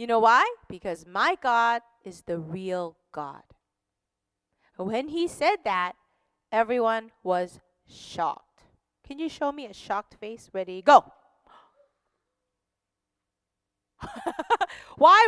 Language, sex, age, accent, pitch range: Korean, female, 30-49, American, 225-350 Hz